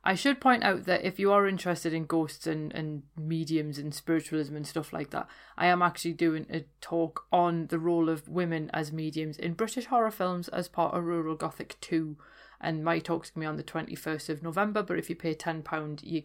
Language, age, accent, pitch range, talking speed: English, 30-49, British, 155-175 Hz, 220 wpm